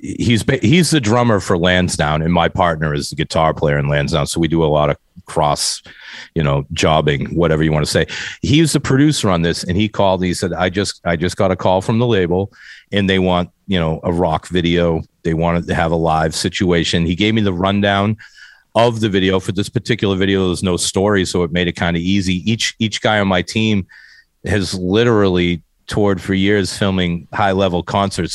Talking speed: 215 wpm